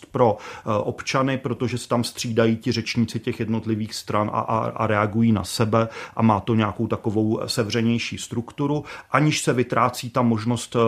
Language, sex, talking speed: Czech, male, 160 wpm